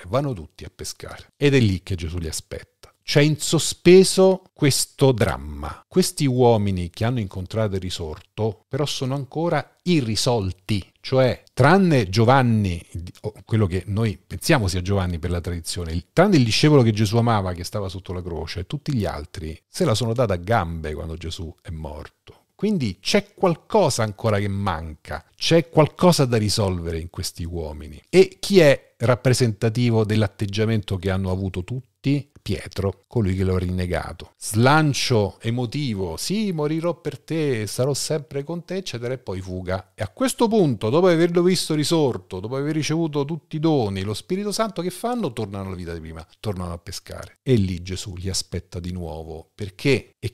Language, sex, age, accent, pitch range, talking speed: Italian, male, 40-59, native, 95-140 Hz, 170 wpm